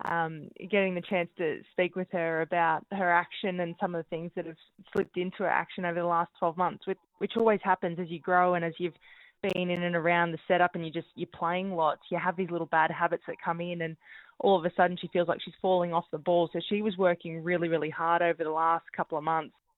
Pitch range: 165-185 Hz